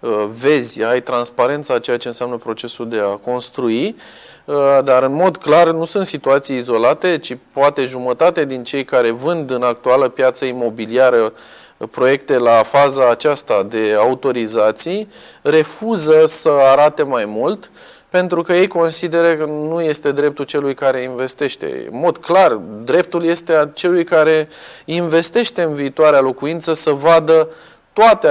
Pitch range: 130-165 Hz